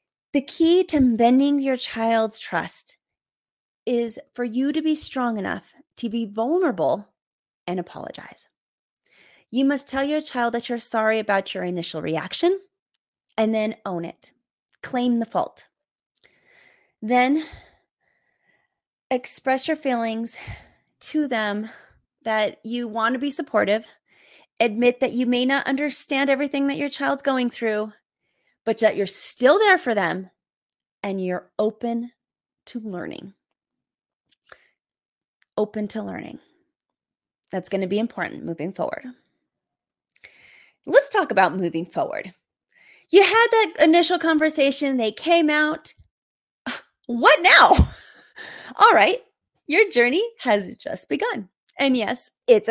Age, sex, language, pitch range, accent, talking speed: 30-49, female, English, 215-295 Hz, American, 125 wpm